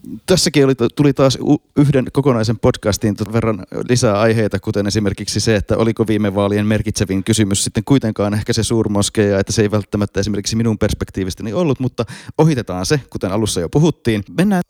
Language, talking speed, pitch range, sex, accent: Finnish, 165 wpm, 100-125 Hz, male, native